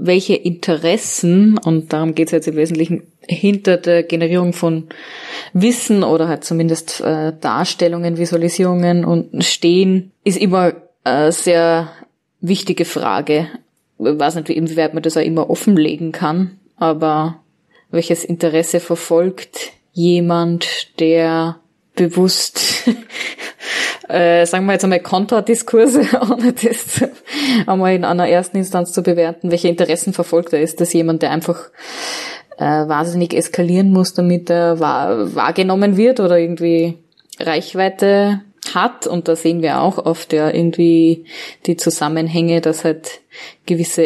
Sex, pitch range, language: female, 165-180 Hz, German